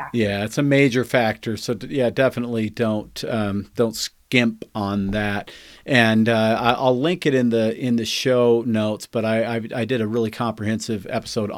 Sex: male